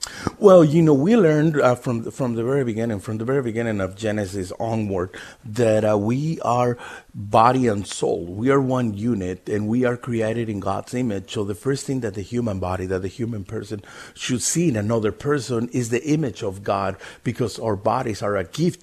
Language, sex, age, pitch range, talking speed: English, male, 50-69, 110-135 Hz, 205 wpm